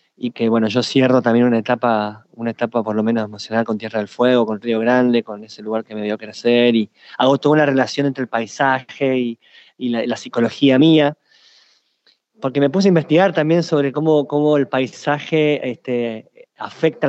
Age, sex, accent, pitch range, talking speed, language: 20-39, male, Argentinian, 120-150 Hz, 195 wpm, Spanish